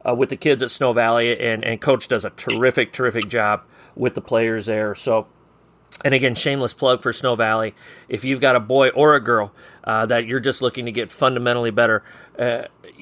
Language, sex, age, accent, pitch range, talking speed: English, male, 40-59, American, 115-135 Hz, 210 wpm